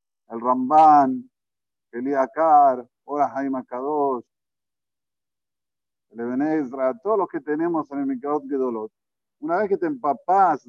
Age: 50-69